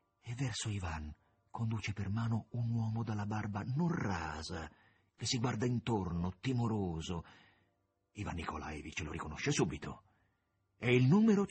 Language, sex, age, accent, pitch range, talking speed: Italian, male, 50-69, native, 90-115 Hz, 130 wpm